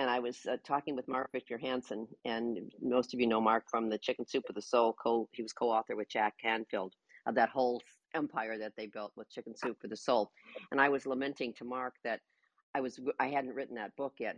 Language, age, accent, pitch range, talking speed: English, 50-69, American, 115-145 Hz, 240 wpm